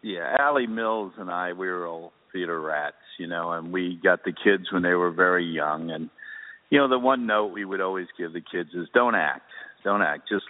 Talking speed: 230 wpm